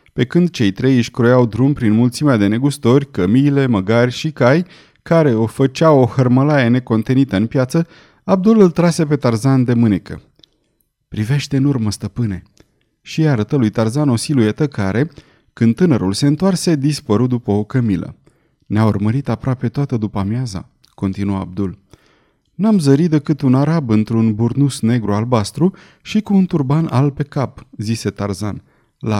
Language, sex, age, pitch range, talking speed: Romanian, male, 30-49, 110-150 Hz, 155 wpm